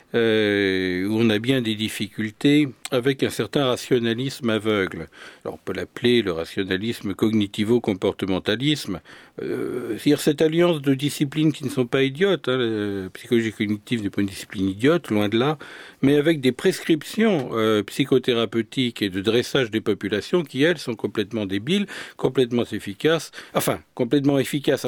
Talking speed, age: 150 wpm, 50-69